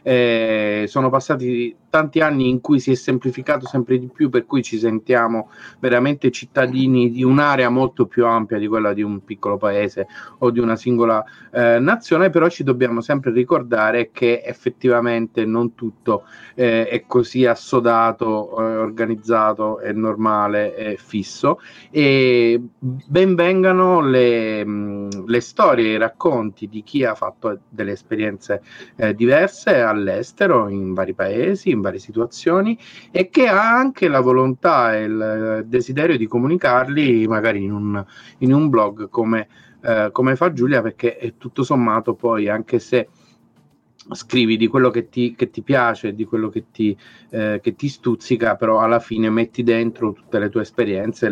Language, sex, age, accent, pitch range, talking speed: Italian, male, 40-59, native, 110-130 Hz, 155 wpm